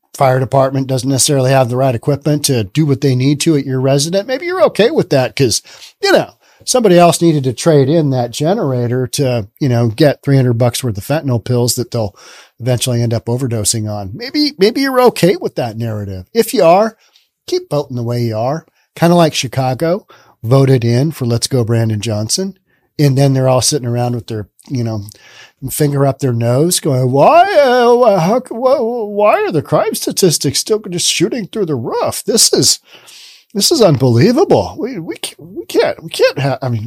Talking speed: 190 wpm